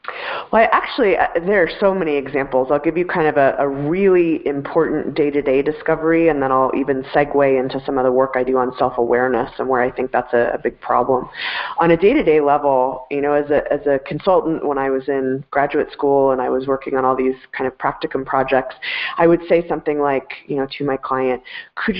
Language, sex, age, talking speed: English, female, 30-49, 225 wpm